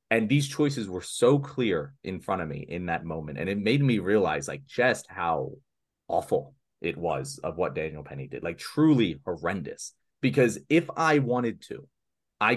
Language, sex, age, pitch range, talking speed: English, male, 30-49, 85-120 Hz, 180 wpm